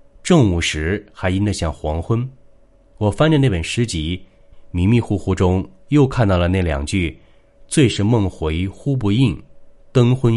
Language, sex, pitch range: Chinese, male, 85-120 Hz